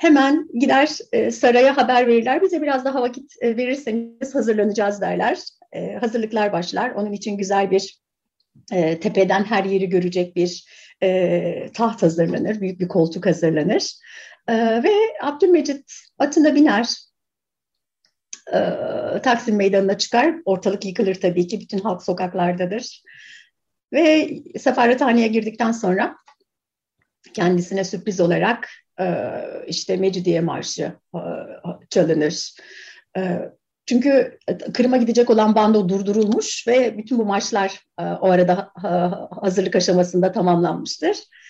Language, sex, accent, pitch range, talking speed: Turkish, female, native, 190-250 Hz, 100 wpm